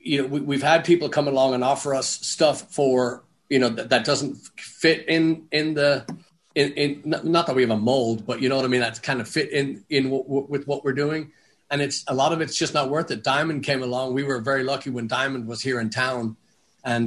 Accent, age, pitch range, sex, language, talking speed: American, 40-59, 125-145 Hz, male, English, 255 wpm